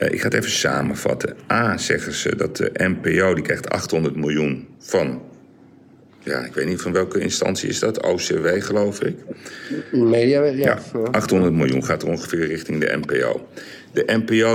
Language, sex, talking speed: Dutch, male, 155 wpm